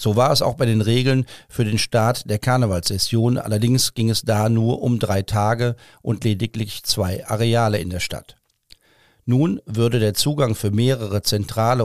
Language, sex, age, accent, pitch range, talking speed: German, male, 50-69, German, 105-125 Hz, 170 wpm